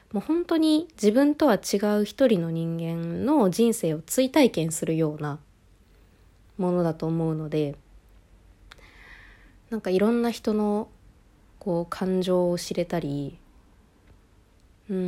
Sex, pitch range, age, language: female, 155-205 Hz, 20-39, Japanese